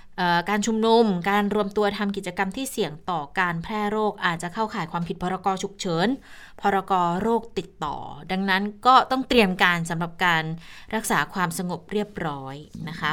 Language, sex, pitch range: Thai, female, 165-210 Hz